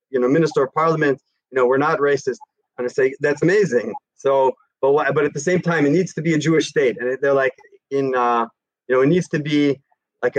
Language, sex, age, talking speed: English, male, 30-49, 235 wpm